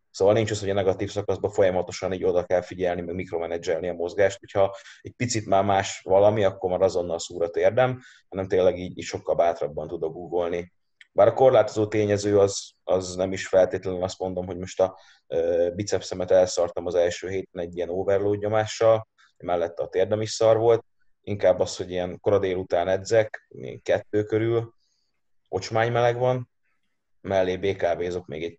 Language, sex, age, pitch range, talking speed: Hungarian, male, 30-49, 95-115 Hz, 175 wpm